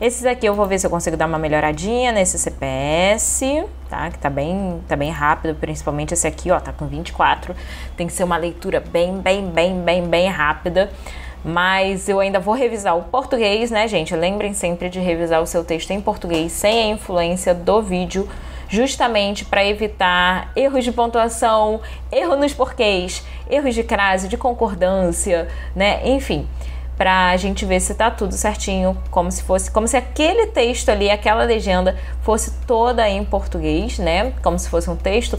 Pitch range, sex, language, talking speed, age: 175-235 Hz, female, Portuguese, 175 wpm, 20-39